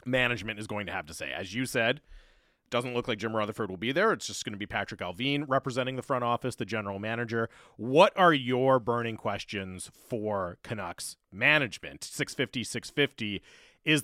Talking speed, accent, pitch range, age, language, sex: 185 wpm, American, 110-140 Hz, 30-49, English, male